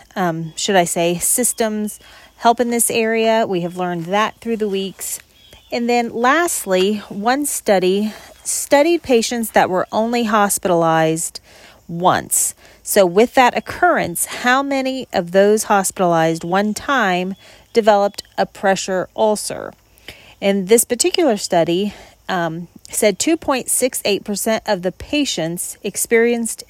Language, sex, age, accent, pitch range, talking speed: English, female, 40-59, American, 185-235 Hz, 120 wpm